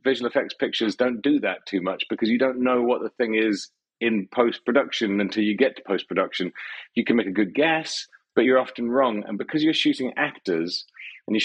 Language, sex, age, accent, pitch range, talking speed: English, male, 40-59, British, 105-130 Hz, 220 wpm